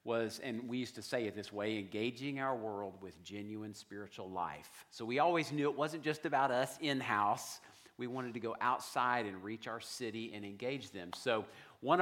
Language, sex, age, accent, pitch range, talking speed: English, male, 50-69, American, 115-145 Hz, 200 wpm